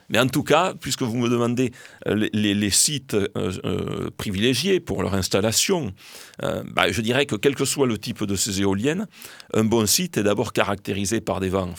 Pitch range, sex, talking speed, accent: 95-115 Hz, male, 175 wpm, French